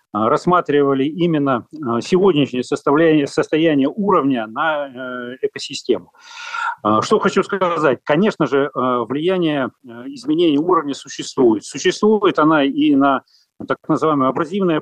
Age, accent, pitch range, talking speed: 40-59, native, 130-185 Hz, 95 wpm